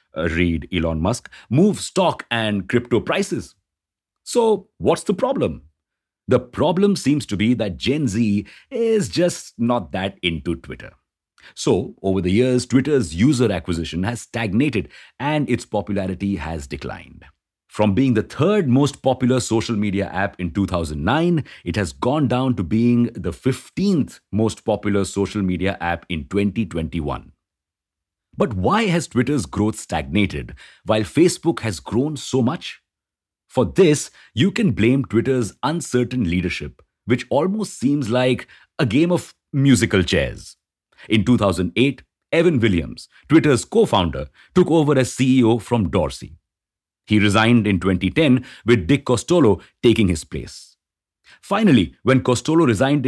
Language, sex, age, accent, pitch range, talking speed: English, male, 50-69, Indian, 95-130 Hz, 140 wpm